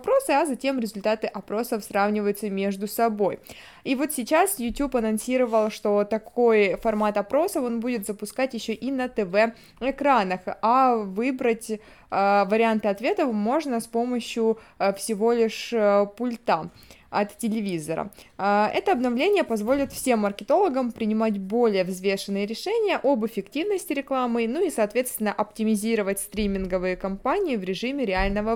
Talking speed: 125 wpm